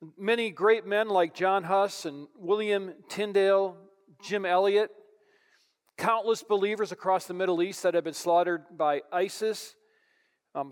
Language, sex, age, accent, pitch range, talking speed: English, male, 40-59, American, 180-235 Hz, 135 wpm